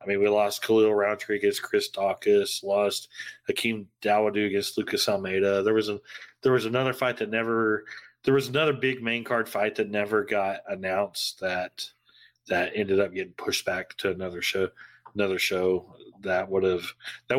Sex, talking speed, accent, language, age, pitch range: male, 175 wpm, American, English, 30-49, 100-120 Hz